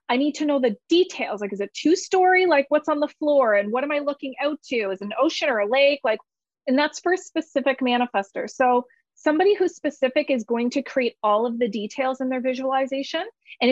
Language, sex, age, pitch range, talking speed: English, female, 30-49, 215-285 Hz, 230 wpm